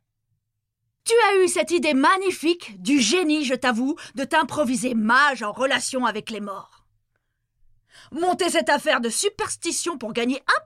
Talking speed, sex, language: 145 wpm, female, French